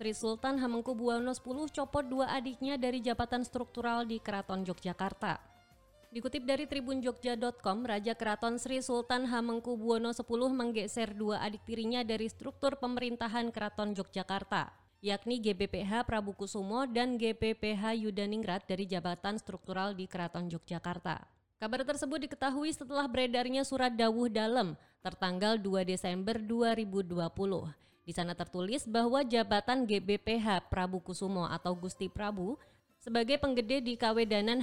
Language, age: Indonesian, 20-39